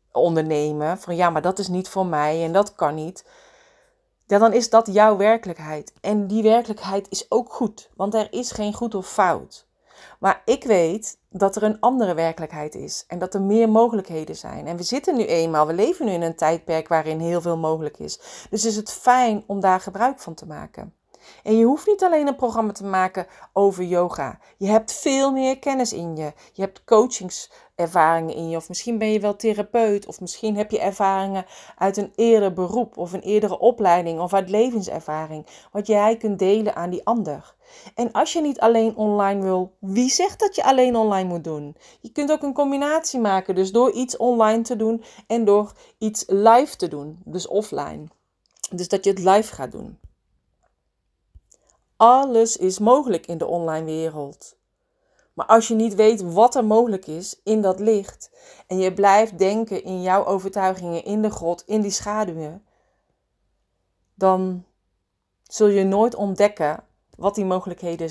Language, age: Dutch, 30-49